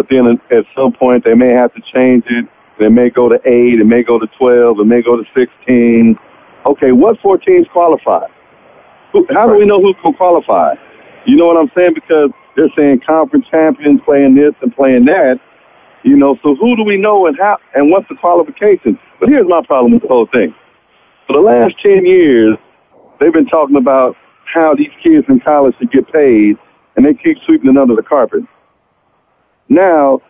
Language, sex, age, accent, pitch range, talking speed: English, male, 50-69, American, 120-165 Hz, 200 wpm